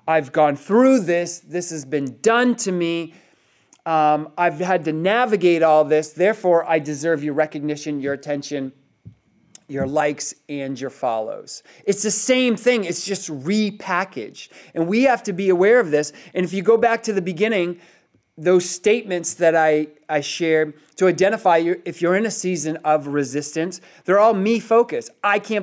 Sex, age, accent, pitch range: male, 30-49, American, 170-225 Hz